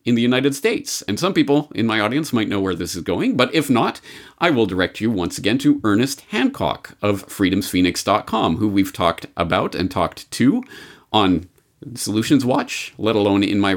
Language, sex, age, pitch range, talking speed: English, male, 40-59, 100-150 Hz, 190 wpm